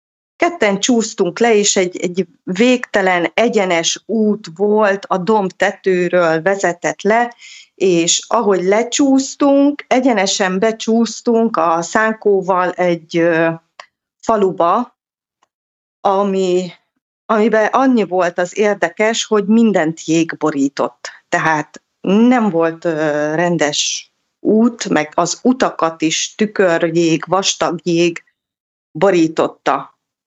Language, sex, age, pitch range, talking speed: English, female, 30-49, 170-215 Hz, 90 wpm